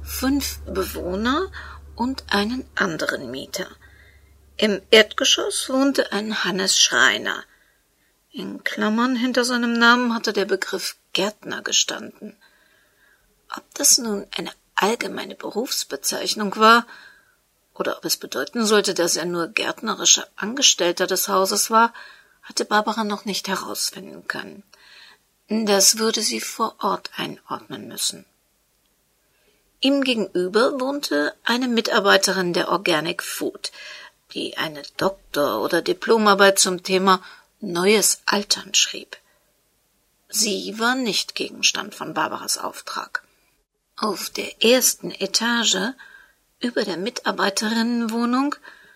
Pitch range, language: 195-255 Hz, German